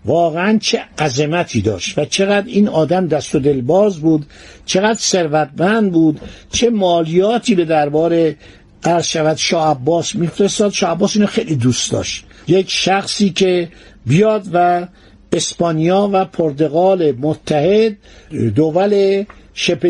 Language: Persian